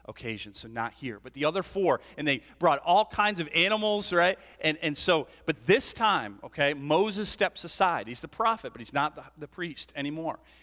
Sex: male